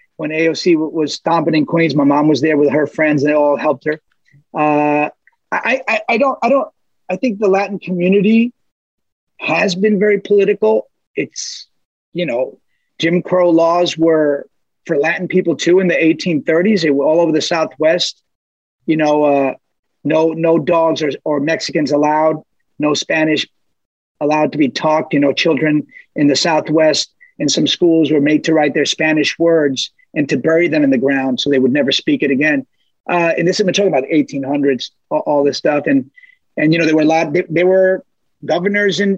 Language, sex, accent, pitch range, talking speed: English, male, American, 150-185 Hz, 190 wpm